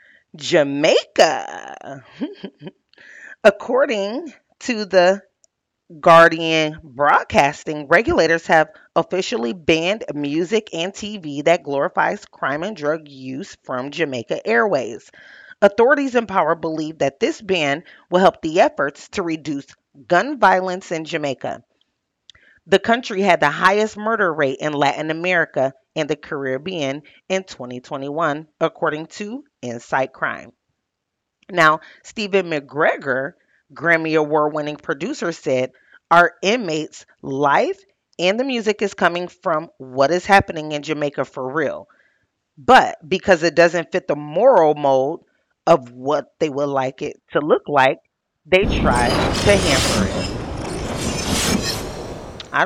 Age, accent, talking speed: 30-49, American, 120 wpm